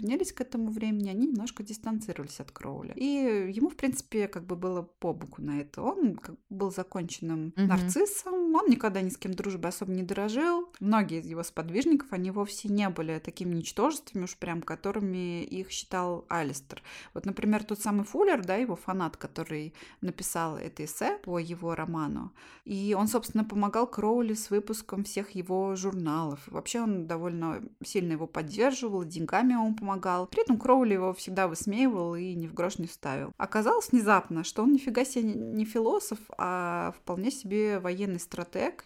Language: Russian